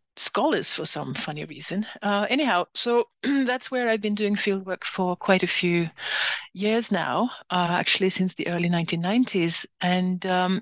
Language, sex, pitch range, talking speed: English, female, 180-210 Hz, 165 wpm